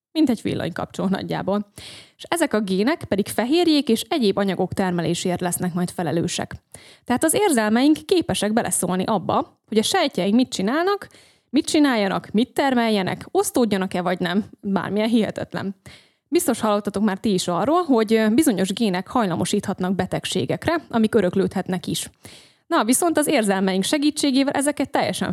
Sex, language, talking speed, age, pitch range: female, Hungarian, 135 wpm, 20-39, 185-280 Hz